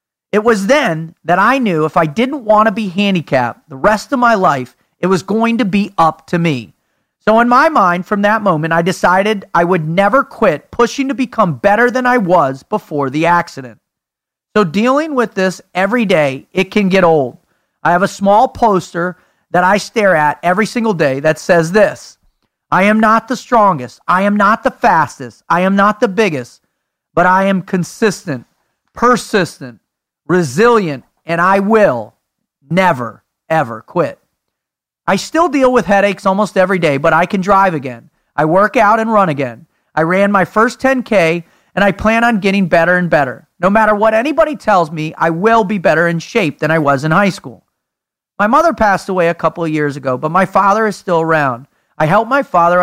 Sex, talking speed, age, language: male, 195 wpm, 40-59, English